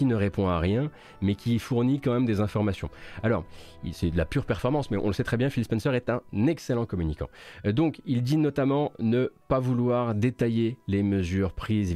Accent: French